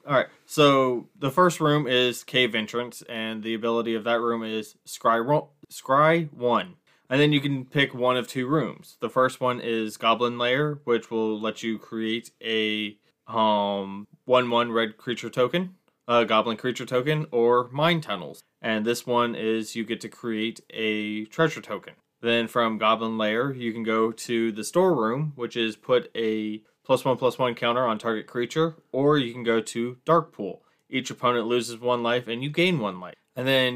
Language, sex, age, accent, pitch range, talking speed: English, male, 20-39, American, 115-130 Hz, 185 wpm